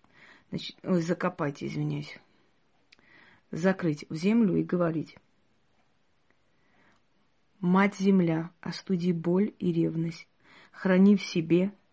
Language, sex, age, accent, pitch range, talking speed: Russian, female, 30-49, native, 165-190 Hz, 80 wpm